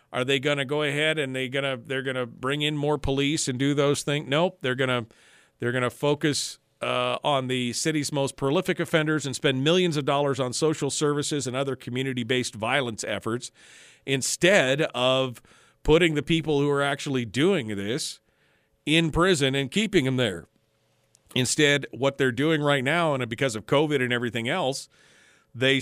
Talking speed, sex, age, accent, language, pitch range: 190 wpm, male, 40-59, American, English, 130-155 Hz